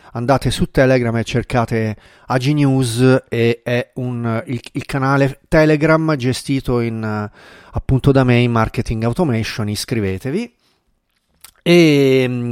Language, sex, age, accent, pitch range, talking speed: Italian, male, 30-49, native, 115-155 Hz, 105 wpm